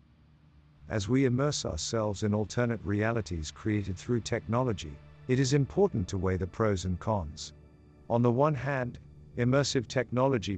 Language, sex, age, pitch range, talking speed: English, male, 50-69, 85-115 Hz, 140 wpm